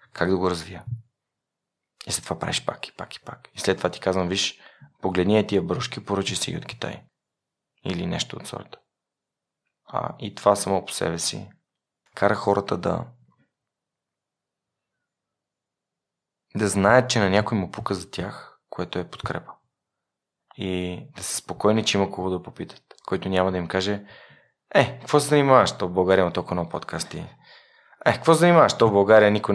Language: Bulgarian